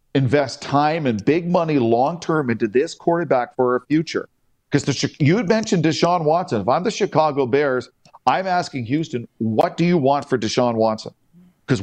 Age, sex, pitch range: 50-69, male, 125-170 Hz